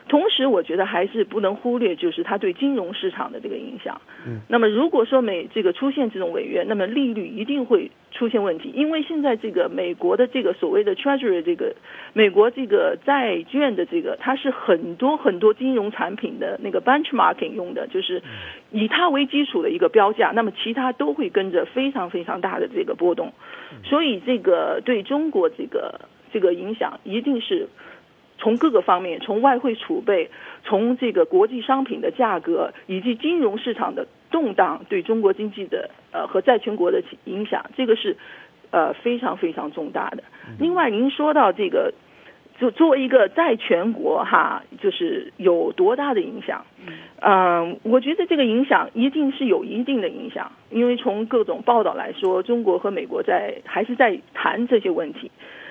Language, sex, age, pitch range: English, female, 40-59, 230-350 Hz